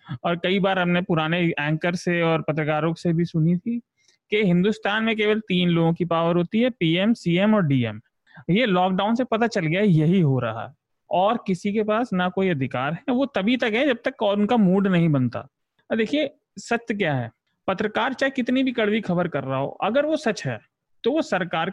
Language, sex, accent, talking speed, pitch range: Hindi, male, native, 210 wpm, 160-220 Hz